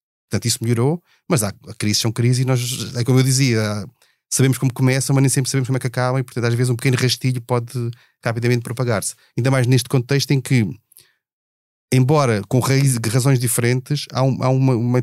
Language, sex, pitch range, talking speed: Portuguese, male, 115-145 Hz, 200 wpm